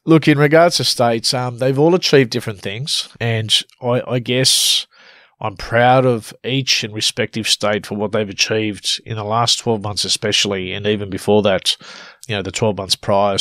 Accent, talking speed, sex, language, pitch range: Australian, 190 wpm, male, English, 100-125 Hz